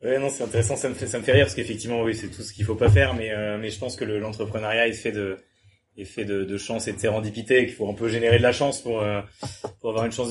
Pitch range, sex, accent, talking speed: 110-130 Hz, male, French, 320 wpm